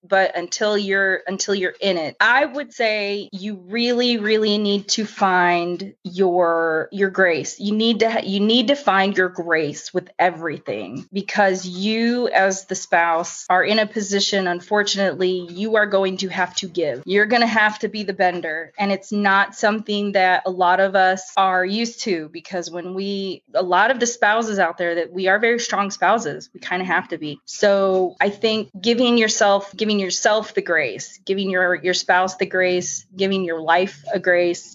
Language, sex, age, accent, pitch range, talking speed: English, female, 20-39, American, 185-215 Hz, 190 wpm